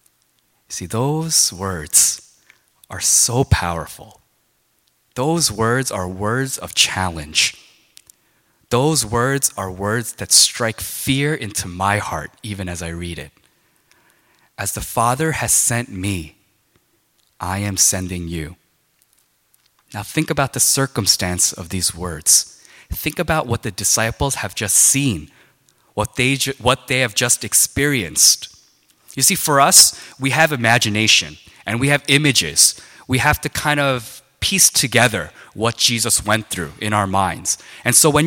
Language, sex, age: Korean, male, 20-39